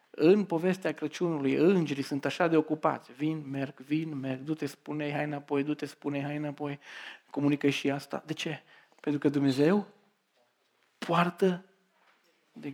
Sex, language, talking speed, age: male, Romanian, 140 wpm, 40-59